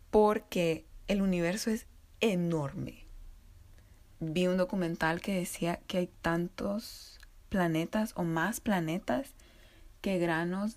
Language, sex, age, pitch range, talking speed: Spanish, female, 20-39, 160-200 Hz, 105 wpm